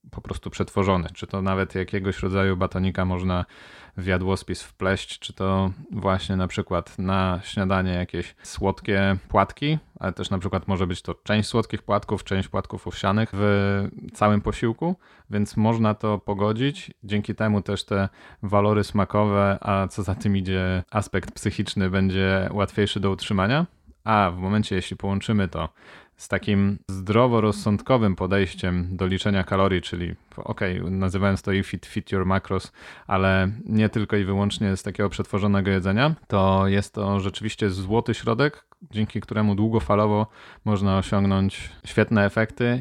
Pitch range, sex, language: 95-105 Hz, male, Polish